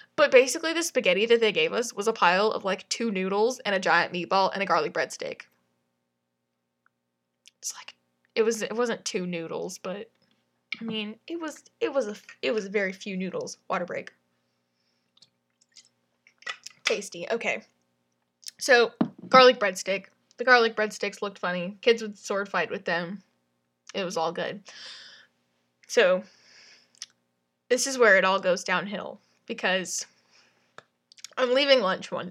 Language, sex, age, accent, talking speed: English, female, 10-29, American, 145 wpm